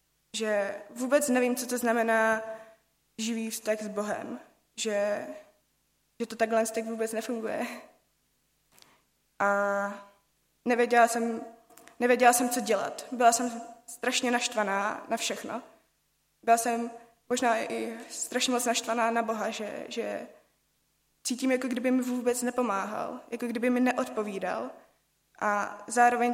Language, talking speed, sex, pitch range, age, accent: Czech, 120 wpm, female, 215-240 Hz, 20-39, native